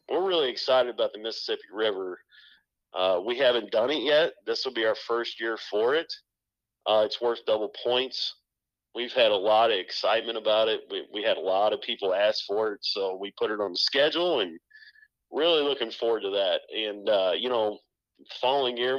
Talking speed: 200 wpm